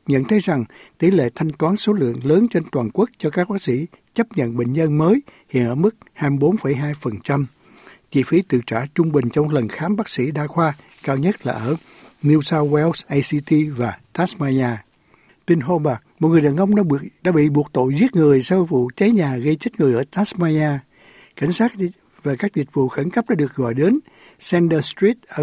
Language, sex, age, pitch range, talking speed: Vietnamese, male, 60-79, 135-180 Hz, 205 wpm